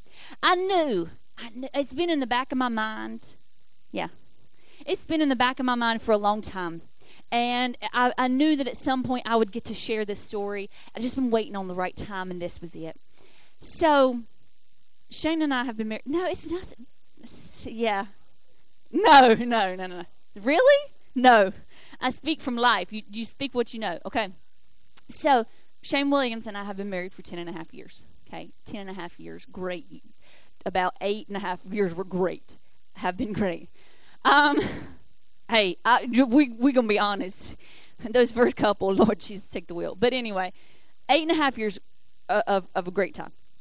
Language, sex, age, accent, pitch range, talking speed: English, female, 30-49, American, 190-255 Hz, 195 wpm